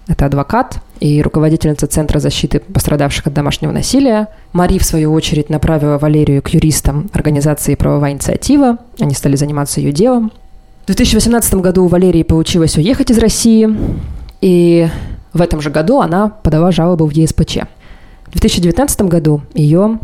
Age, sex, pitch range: 20-39, female, 150-185 Hz